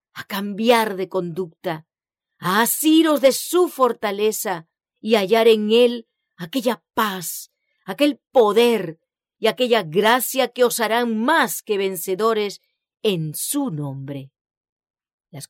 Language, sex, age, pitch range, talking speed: English, female, 40-59, 165-230 Hz, 115 wpm